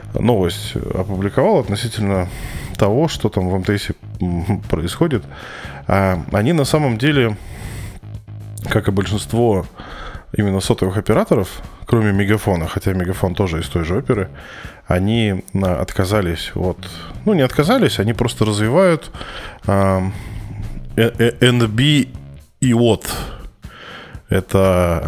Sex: male